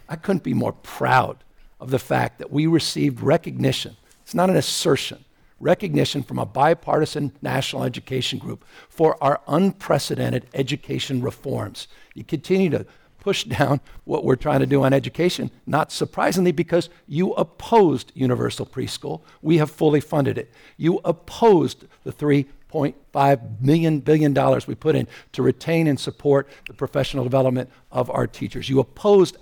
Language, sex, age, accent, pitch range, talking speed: English, male, 50-69, American, 130-165 Hz, 155 wpm